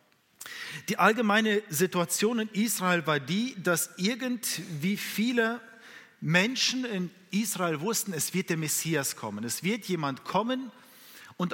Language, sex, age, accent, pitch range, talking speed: German, male, 50-69, German, 155-215 Hz, 125 wpm